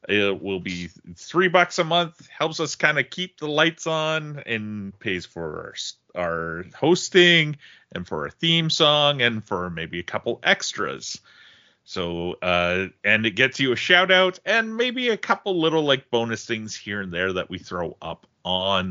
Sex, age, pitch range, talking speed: male, 30-49, 100-160 Hz, 180 wpm